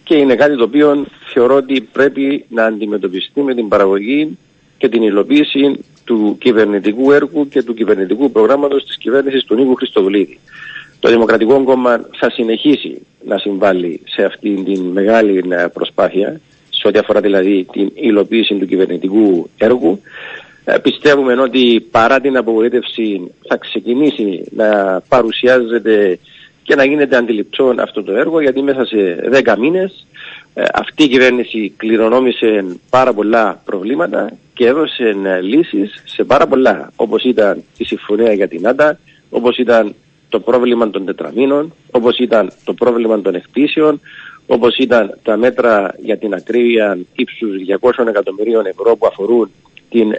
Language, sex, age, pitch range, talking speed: Greek, male, 50-69, 105-135 Hz, 140 wpm